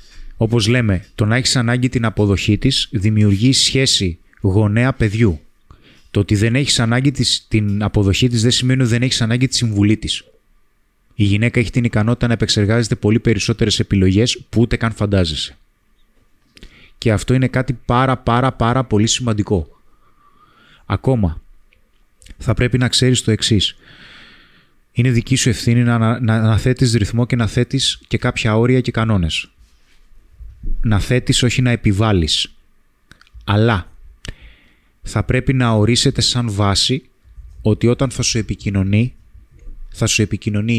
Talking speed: 140 wpm